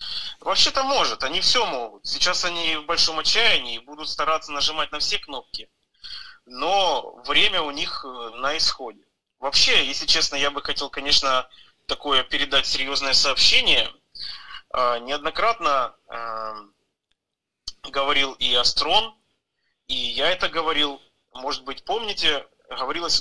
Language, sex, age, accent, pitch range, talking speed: Russian, male, 30-49, native, 140-180 Hz, 115 wpm